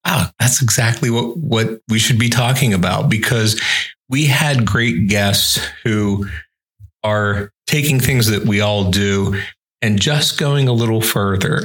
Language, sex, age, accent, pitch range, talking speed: English, male, 40-59, American, 105-125 Hz, 150 wpm